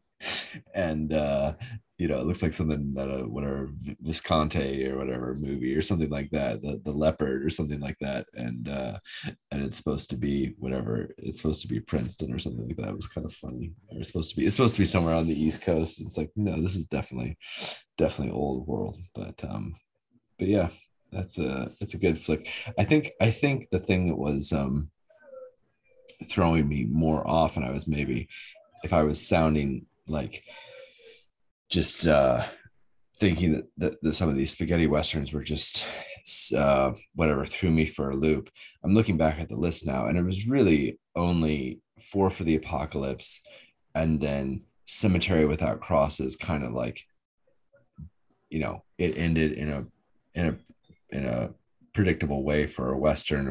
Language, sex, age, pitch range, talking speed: English, male, 20-39, 75-95 Hz, 180 wpm